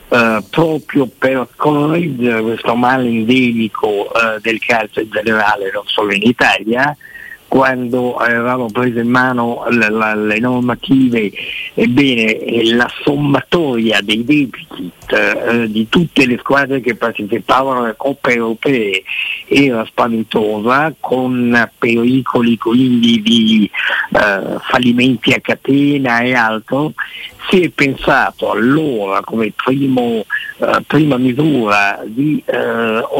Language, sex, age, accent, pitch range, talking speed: Italian, male, 60-79, native, 115-145 Hz, 105 wpm